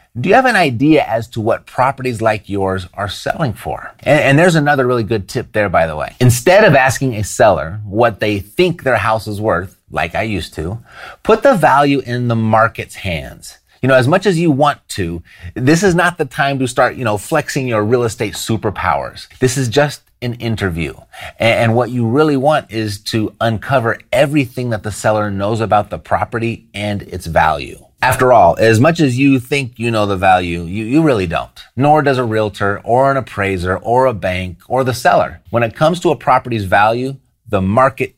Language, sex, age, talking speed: English, male, 30-49, 205 wpm